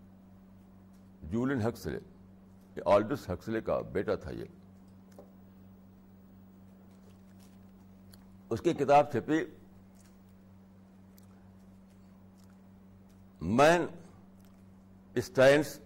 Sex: male